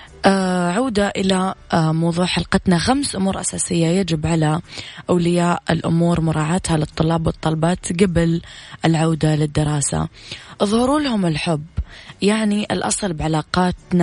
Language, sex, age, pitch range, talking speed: Arabic, female, 20-39, 160-185 Hz, 105 wpm